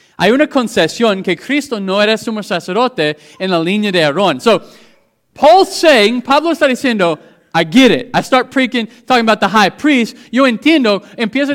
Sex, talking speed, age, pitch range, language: male, 175 wpm, 30-49, 180-260 Hz, English